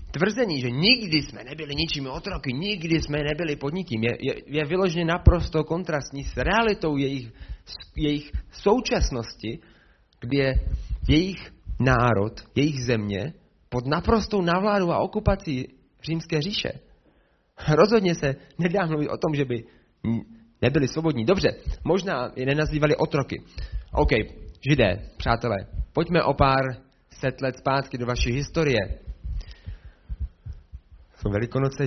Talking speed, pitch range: 120 wpm, 120-170 Hz